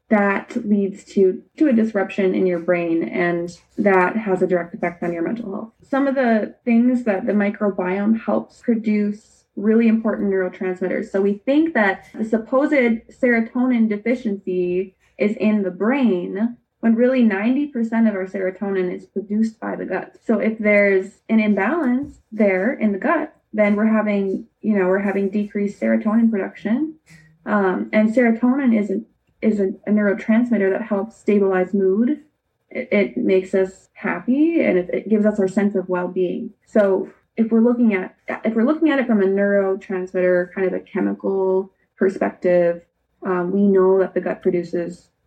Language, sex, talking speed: English, female, 165 wpm